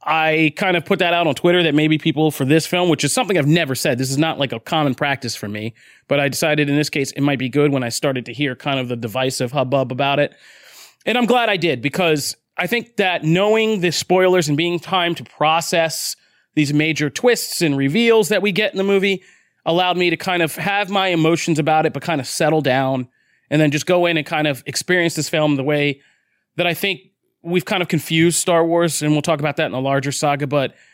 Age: 30-49